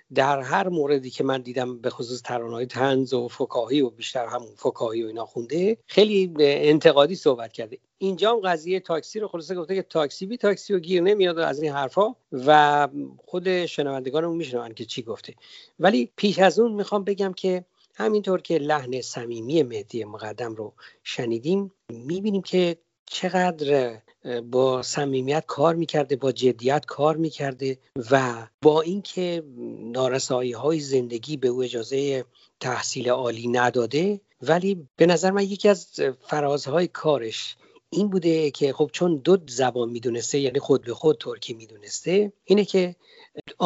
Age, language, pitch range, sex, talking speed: 50-69, Persian, 125-180 Hz, male, 150 wpm